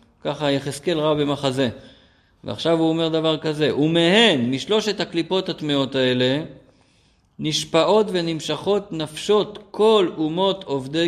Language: Hebrew